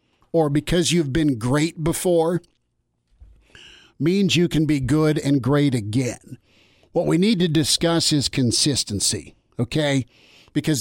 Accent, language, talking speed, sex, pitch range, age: American, English, 130 wpm, male, 140-170 Hz, 50-69